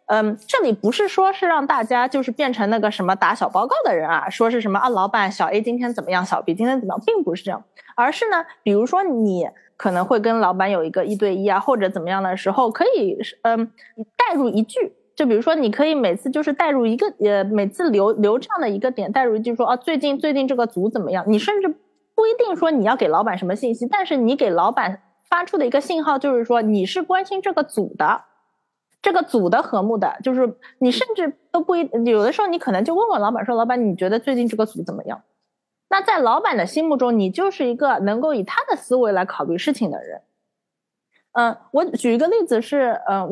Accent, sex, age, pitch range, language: native, female, 20-39, 210-320 Hz, Chinese